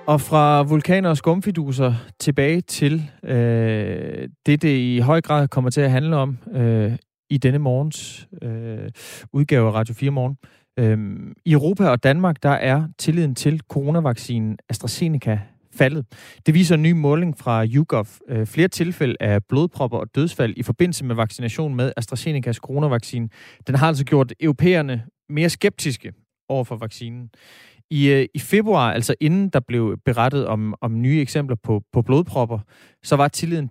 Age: 30-49